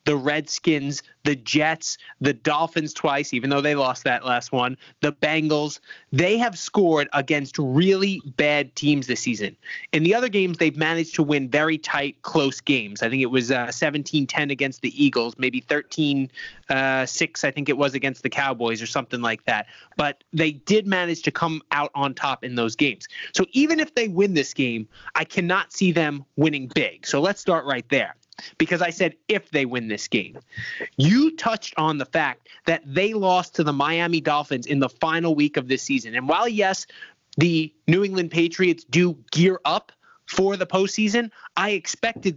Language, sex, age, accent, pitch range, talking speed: English, male, 20-39, American, 140-185 Hz, 185 wpm